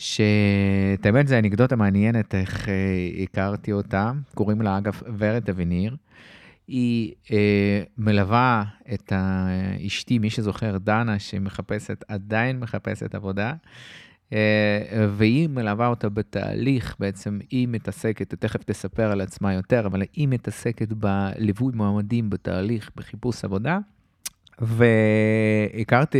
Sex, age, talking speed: male, 30-49, 110 wpm